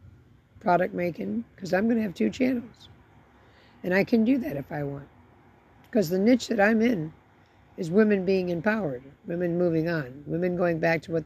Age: 60-79